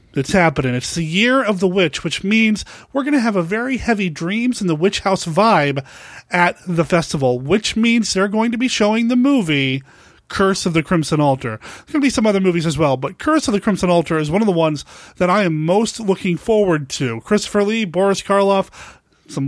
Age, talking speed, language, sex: 30-49, 220 wpm, English, male